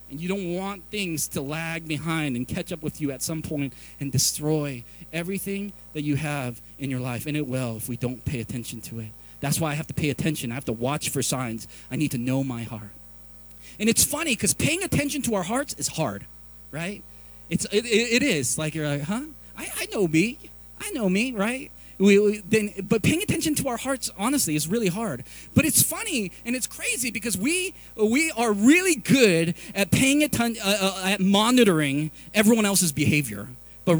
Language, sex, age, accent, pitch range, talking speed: English, male, 30-49, American, 145-225 Hz, 210 wpm